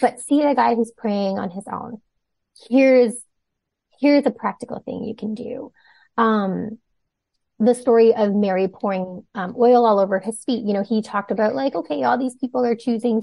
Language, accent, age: English, American, 20-39